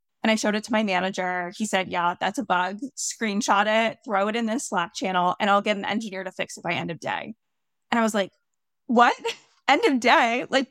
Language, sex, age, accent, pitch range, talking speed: English, female, 20-39, American, 195-245 Hz, 235 wpm